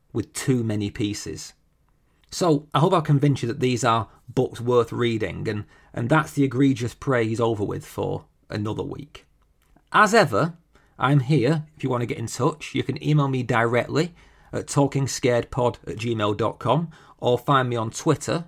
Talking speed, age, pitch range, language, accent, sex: 170 wpm, 40-59, 110-140 Hz, English, British, male